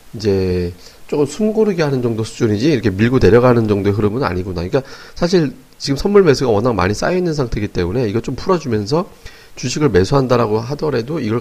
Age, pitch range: 40-59, 100-140 Hz